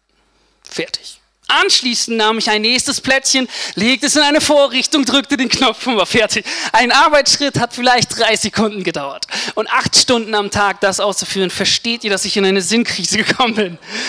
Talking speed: 175 wpm